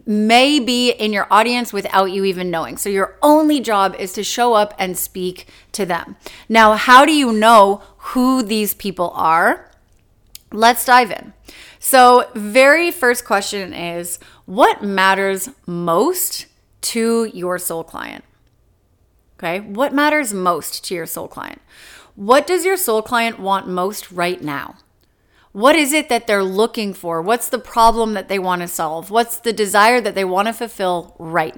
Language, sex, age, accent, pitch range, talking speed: English, female, 30-49, American, 190-245 Hz, 165 wpm